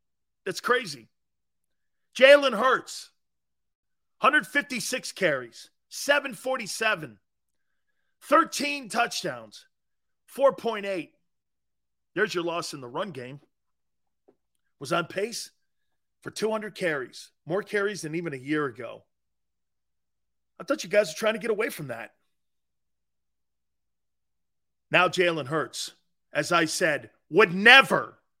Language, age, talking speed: English, 40-59, 105 wpm